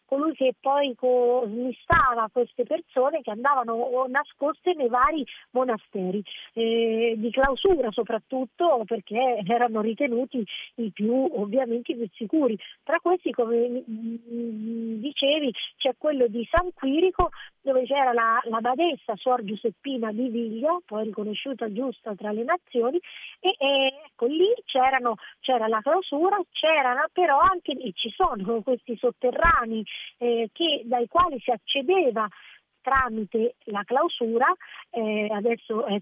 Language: Italian